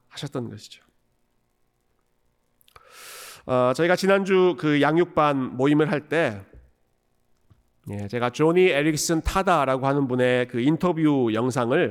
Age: 40-59